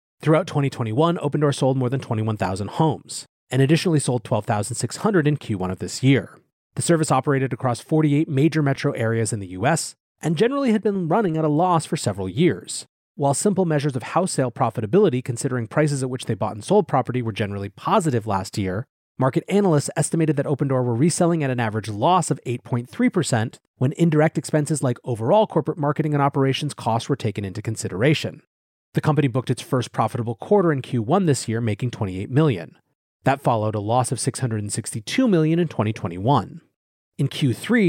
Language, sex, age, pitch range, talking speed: English, male, 30-49, 120-160 Hz, 175 wpm